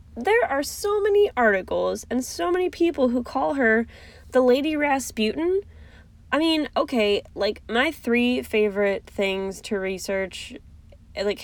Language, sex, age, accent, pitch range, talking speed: English, female, 10-29, American, 180-235 Hz, 135 wpm